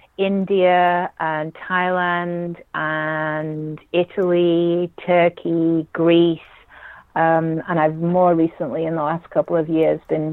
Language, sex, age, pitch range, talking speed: English, female, 40-59, 165-195 Hz, 110 wpm